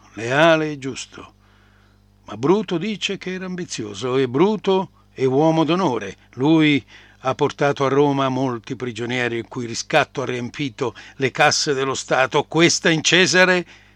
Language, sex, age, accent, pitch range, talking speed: Italian, male, 60-79, native, 105-170 Hz, 140 wpm